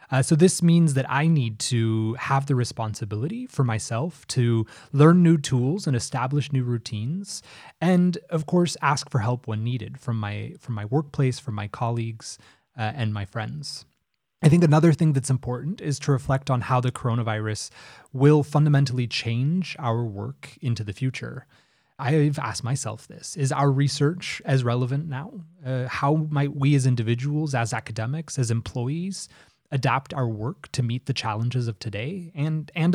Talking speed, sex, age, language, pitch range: 170 wpm, male, 30-49, English, 115-150 Hz